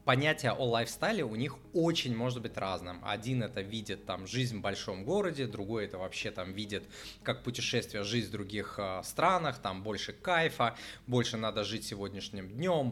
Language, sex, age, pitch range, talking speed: Russian, male, 20-39, 105-125 Hz, 165 wpm